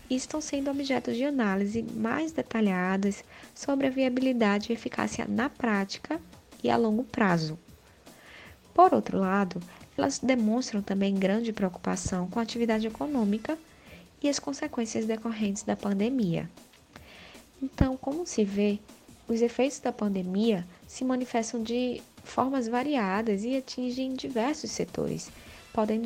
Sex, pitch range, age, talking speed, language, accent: female, 210-260 Hz, 20-39, 125 wpm, Portuguese, Brazilian